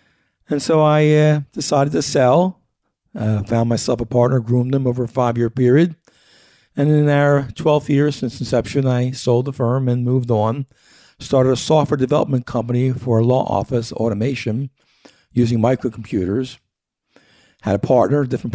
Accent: American